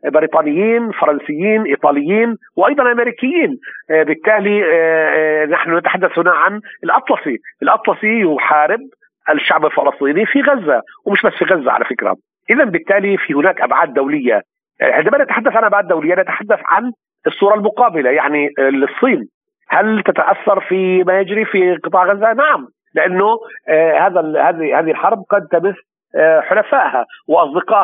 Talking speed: 125 wpm